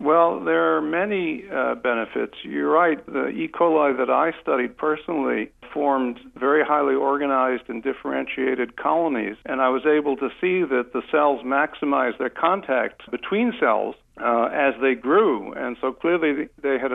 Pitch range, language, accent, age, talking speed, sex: 125-145 Hz, English, American, 60-79, 160 wpm, male